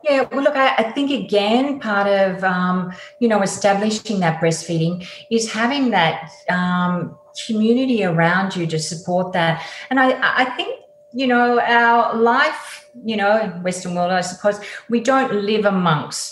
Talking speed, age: 160 wpm, 40-59